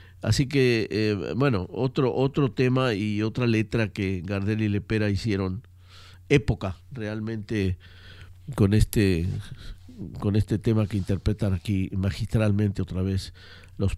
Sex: male